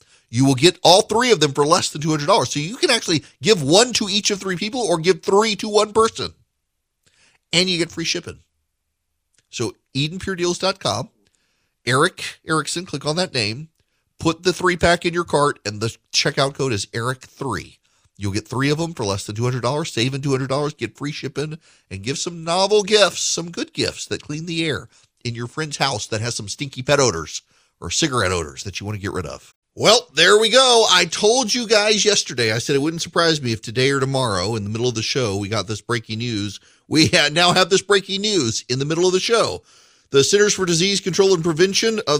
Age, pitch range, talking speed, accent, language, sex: 40-59, 125-180 Hz, 215 wpm, American, English, male